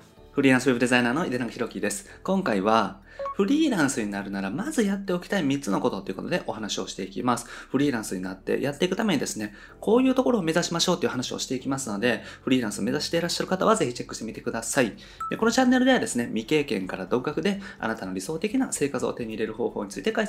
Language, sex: Japanese, male